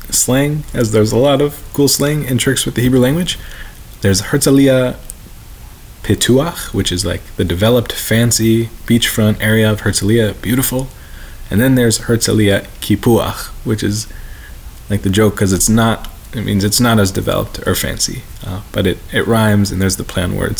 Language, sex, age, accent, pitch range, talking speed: English, male, 20-39, American, 100-115 Hz, 170 wpm